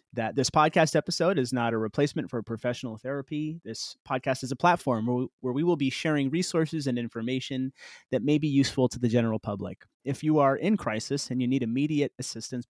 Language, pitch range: English, 120-145 Hz